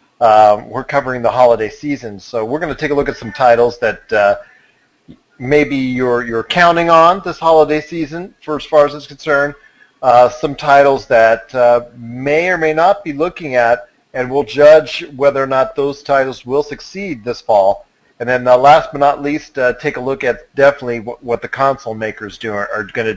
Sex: male